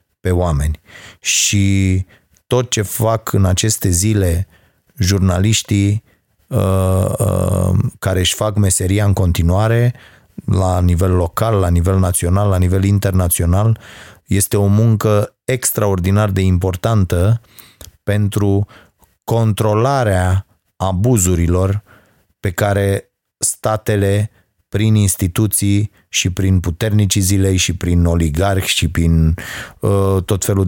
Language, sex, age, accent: Romanian, male, 30-49, native